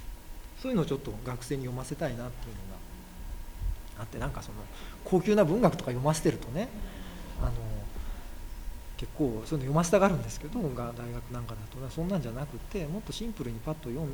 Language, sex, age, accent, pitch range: Japanese, male, 40-59, native, 110-150 Hz